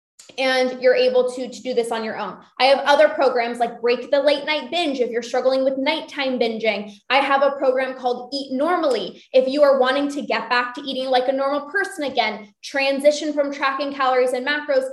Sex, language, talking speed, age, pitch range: female, English, 215 wpm, 20-39, 245-290 Hz